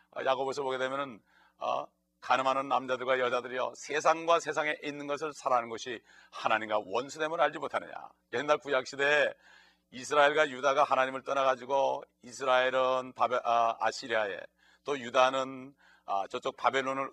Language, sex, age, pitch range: Korean, male, 40-59, 120-150 Hz